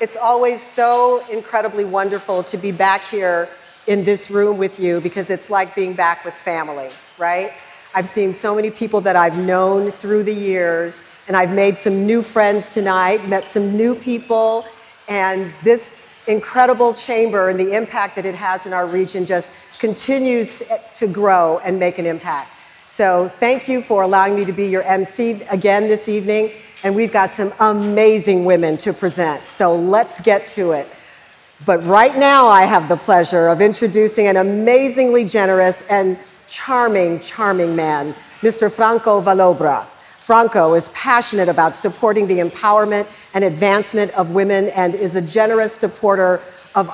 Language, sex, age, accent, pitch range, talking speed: English, female, 50-69, American, 180-220 Hz, 160 wpm